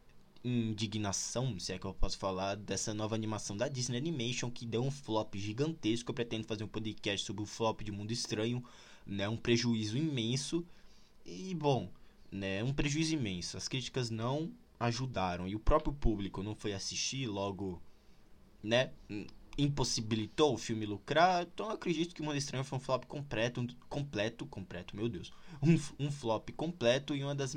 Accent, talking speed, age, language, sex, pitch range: Brazilian, 170 wpm, 20-39, Portuguese, male, 110-150 Hz